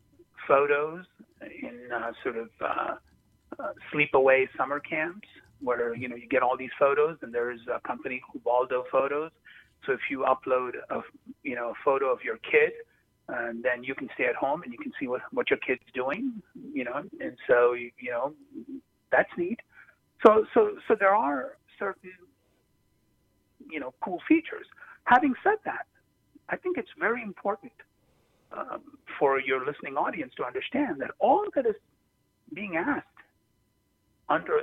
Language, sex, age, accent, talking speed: English, male, 40-59, American, 160 wpm